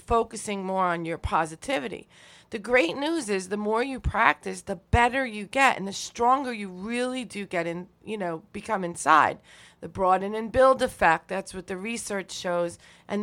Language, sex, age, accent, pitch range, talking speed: English, female, 40-59, American, 185-230 Hz, 180 wpm